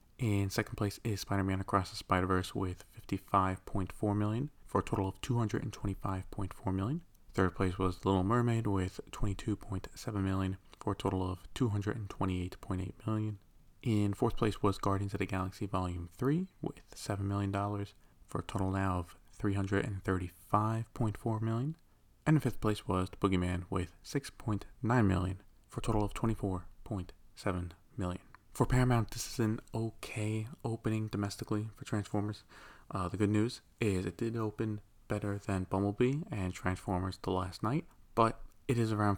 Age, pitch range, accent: 20-39, 95-110 Hz, American